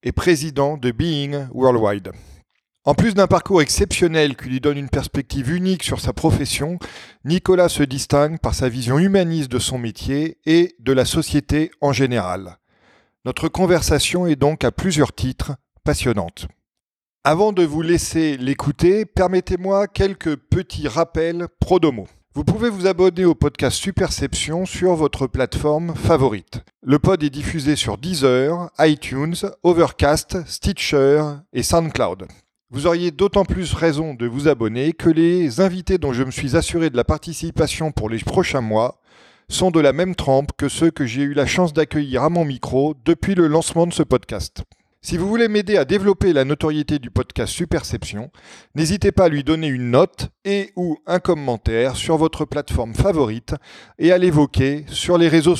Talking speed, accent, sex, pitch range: 165 wpm, French, male, 130-175 Hz